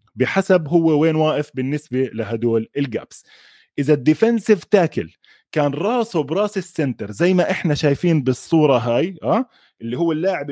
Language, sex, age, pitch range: Arabic, male, 20-39, 135-195 Hz